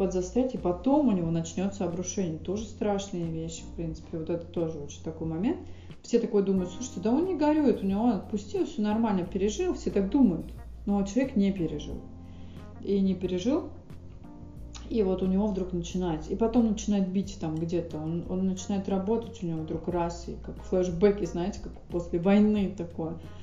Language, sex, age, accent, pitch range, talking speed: Russian, female, 30-49, native, 170-215 Hz, 180 wpm